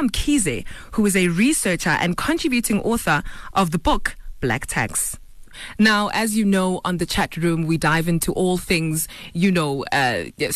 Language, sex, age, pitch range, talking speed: English, female, 20-39, 165-210 Hz, 165 wpm